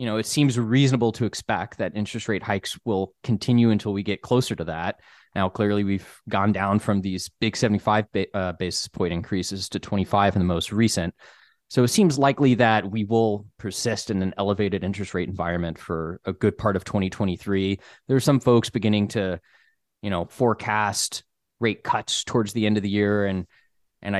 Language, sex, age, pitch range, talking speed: English, male, 20-39, 95-115 Hz, 190 wpm